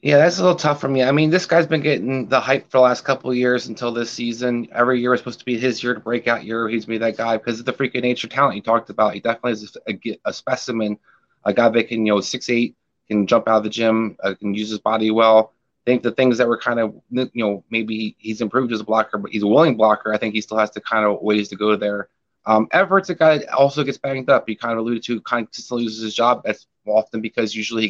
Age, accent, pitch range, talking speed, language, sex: 20-39, American, 105-125 Hz, 285 wpm, English, male